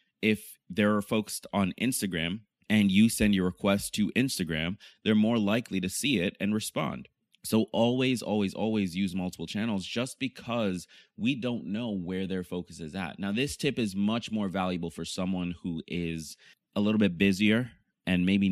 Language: English